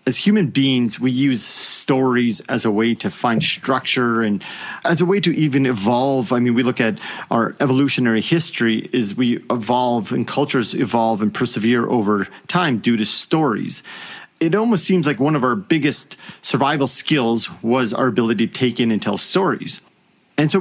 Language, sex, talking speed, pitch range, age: English, male, 180 wpm, 110-145 Hz, 30-49